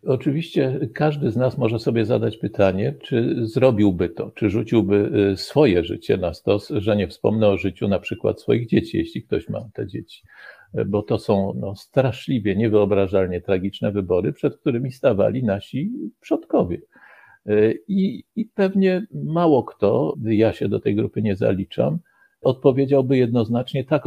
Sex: male